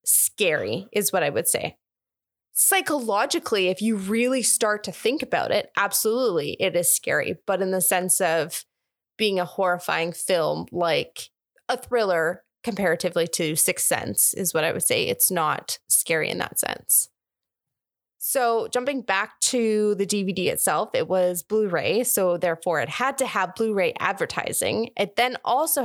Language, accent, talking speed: English, American, 155 wpm